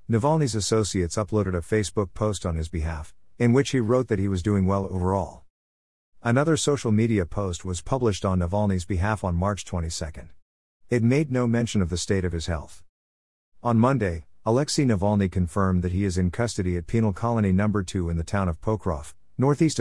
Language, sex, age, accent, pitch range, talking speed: English, male, 50-69, American, 90-110 Hz, 190 wpm